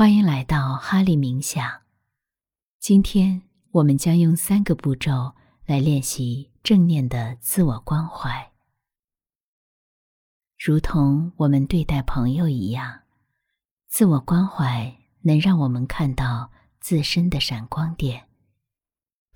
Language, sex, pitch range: Chinese, female, 125-165 Hz